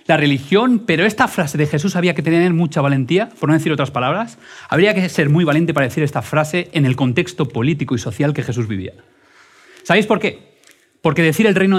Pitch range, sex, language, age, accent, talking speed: 130-185 Hz, male, Spanish, 30-49, Spanish, 215 wpm